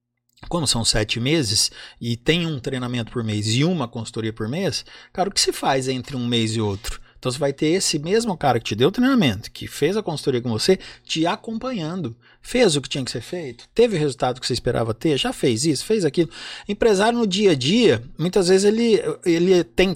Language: Portuguese